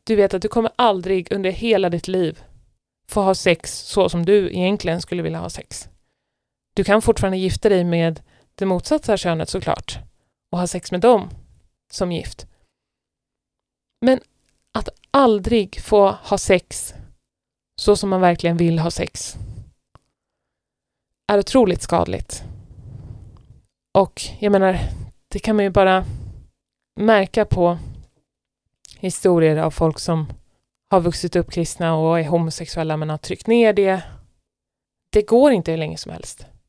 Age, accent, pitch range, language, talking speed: 20-39, native, 165-205 Hz, Swedish, 140 wpm